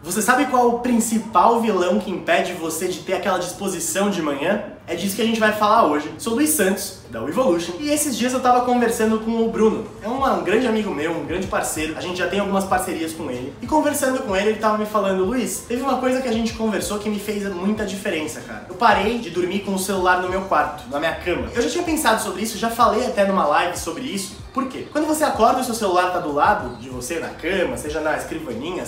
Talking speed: 250 wpm